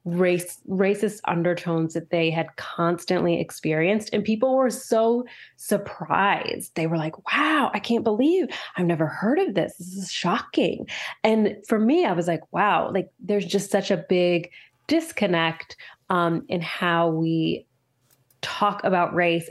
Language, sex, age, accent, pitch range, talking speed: English, female, 20-39, American, 170-205 Hz, 150 wpm